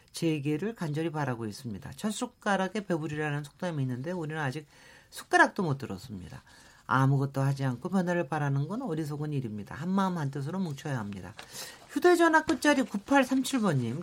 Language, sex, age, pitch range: Korean, male, 40-59, 145-210 Hz